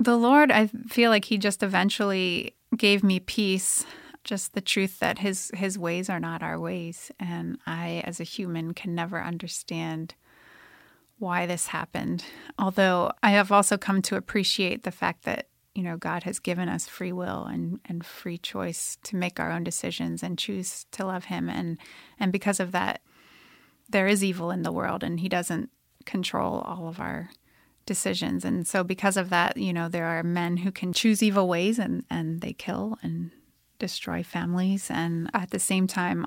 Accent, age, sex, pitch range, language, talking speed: American, 30-49, female, 170-205 Hz, English, 185 wpm